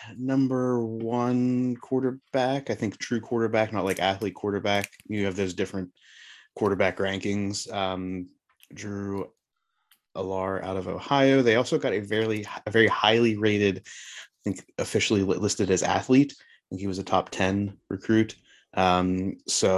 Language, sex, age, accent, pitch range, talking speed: English, male, 20-39, American, 95-115 Hz, 145 wpm